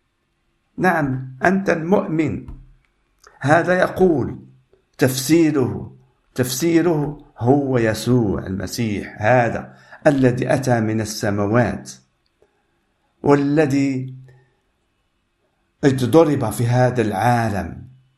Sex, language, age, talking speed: male, Arabic, 50-69, 65 wpm